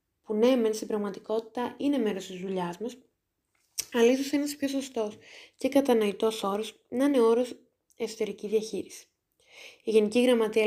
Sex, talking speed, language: female, 140 wpm, Greek